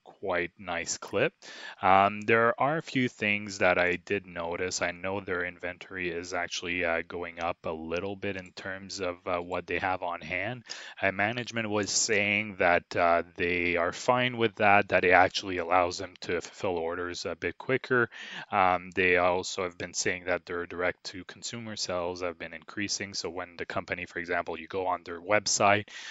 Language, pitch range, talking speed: English, 90-105 Hz, 190 wpm